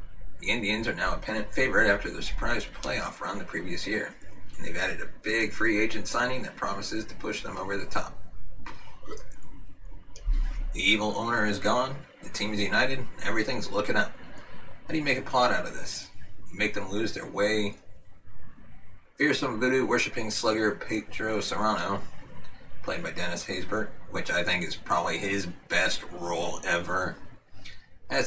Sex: male